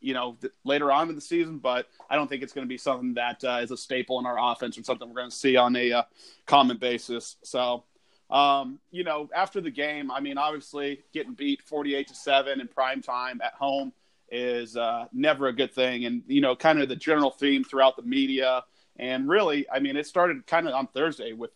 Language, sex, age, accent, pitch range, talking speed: English, male, 30-49, American, 130-155 Hz, 230 wpm